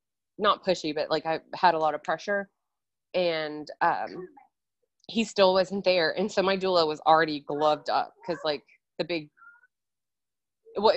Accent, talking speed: American, 160 wpm